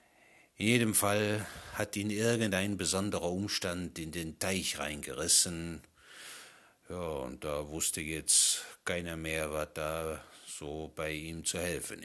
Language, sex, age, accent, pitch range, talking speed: German, male, 60-79, German, 85-115 Hz, 130 wpm